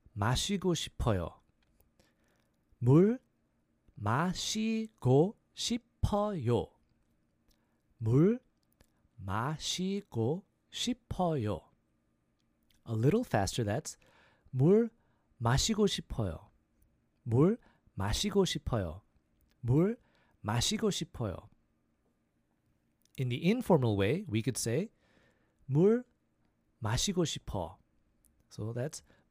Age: 40-59